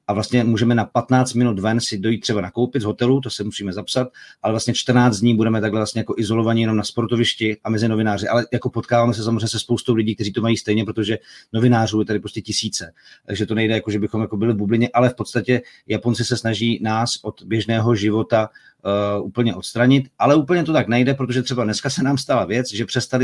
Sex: male